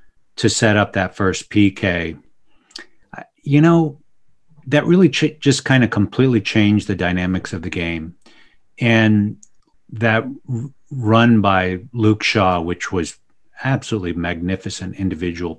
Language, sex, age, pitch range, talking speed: English, male, 40-59, 95-125 Hz, 125 wpm